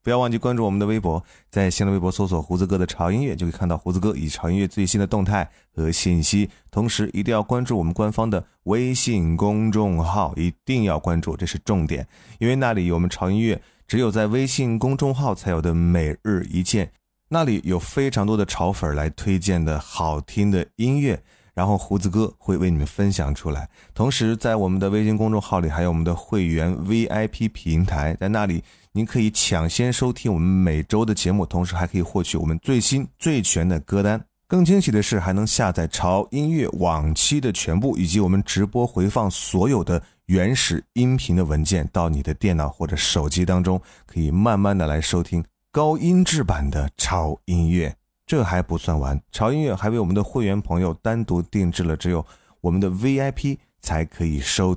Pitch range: 85-110 Hz